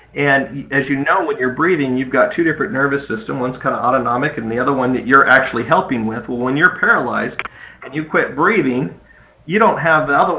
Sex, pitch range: male, 125-155 Hz